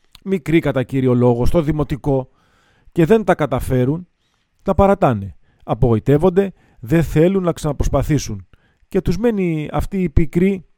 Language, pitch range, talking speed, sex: Greek, 130-175 Hz, 130 wpm, male